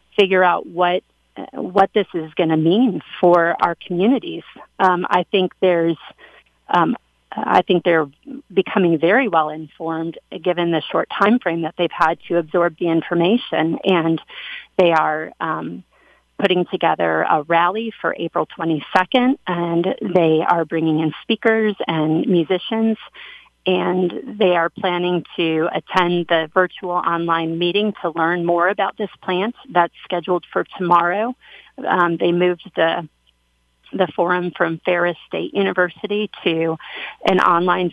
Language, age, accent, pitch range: English, 40-59, American, 165-195 Hz